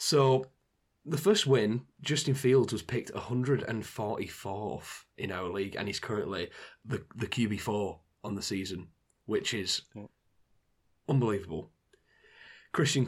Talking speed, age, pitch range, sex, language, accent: 140 wpm, 20-39, 100-125 Hz, male, English, British